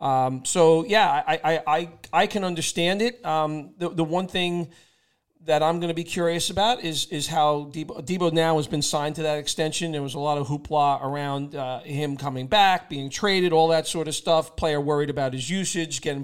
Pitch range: 140-165 Hz